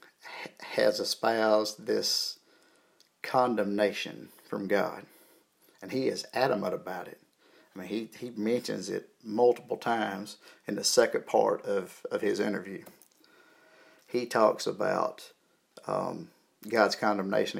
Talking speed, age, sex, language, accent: 115 wpm, 50-69, male, English, American